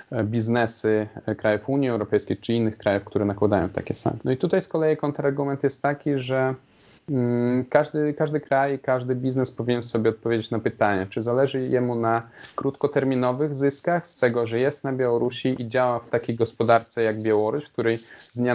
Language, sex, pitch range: Polish, male, 105-125 Hz